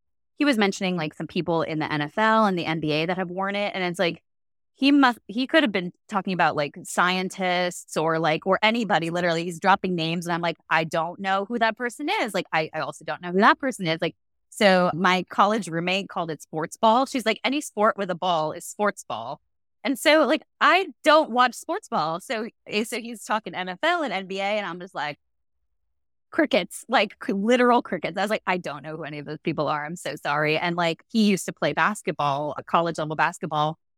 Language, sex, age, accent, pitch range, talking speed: English, female, 20-39, American, 165-215 Hz, 220 wpm